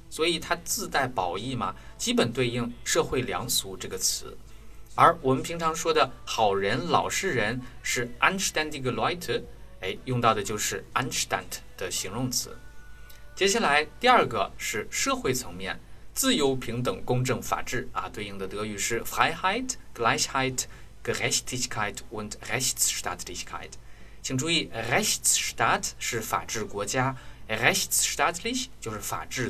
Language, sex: Chinese, male